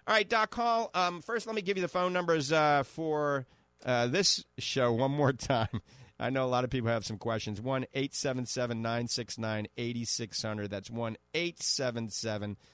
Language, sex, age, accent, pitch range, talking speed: English, male, 40-59, American, 115-140 Hz, 155 wpm